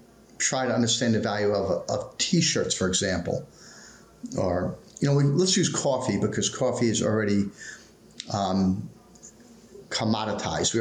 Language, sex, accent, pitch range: English, male, American, 105-130 Hz